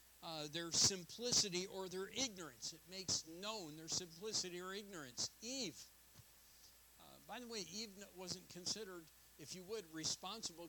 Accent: American